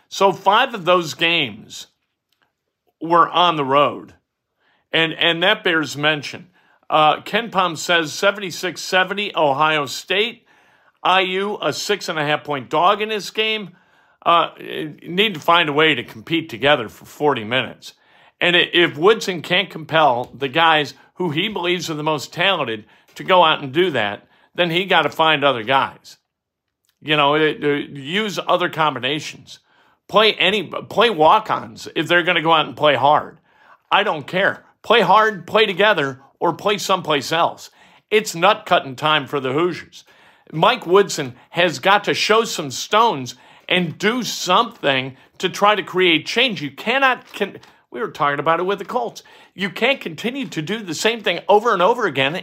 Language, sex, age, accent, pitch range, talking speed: English, male, 50-69, American, 150-205 Hz, 165 wpm